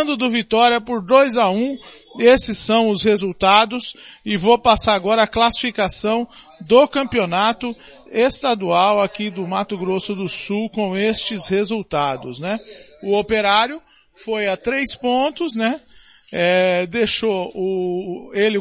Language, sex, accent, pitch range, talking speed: Portuguese, male, Brazilian, 185-240 Hz, 125 wpm